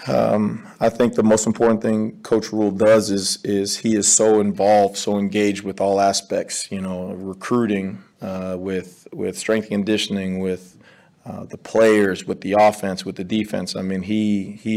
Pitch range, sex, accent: 100-115 Hz, male, American